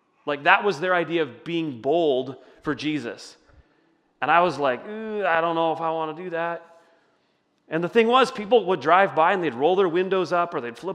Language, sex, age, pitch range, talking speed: English, male, 30-49, 155-220 Hz, 225 wpm